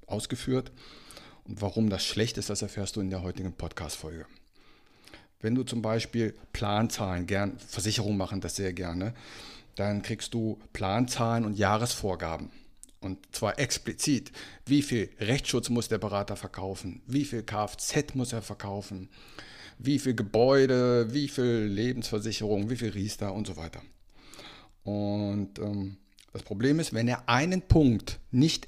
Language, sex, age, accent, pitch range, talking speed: German, male, 50-69, German, 100-125 Hz, 140 wpm